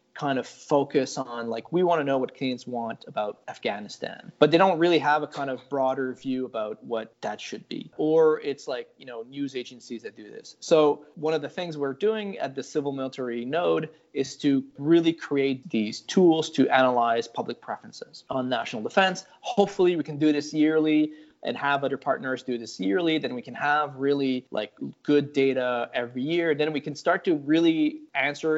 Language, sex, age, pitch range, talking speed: English, male, 20-39, 130-160 Hz, 195 wpm